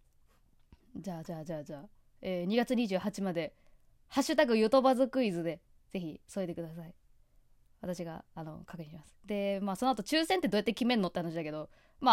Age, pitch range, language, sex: 20-39, 170-225 Hz, Japanese, female